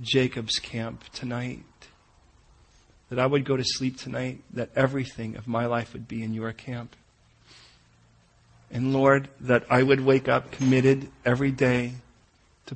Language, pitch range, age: English, 85-125 Hz, 40-59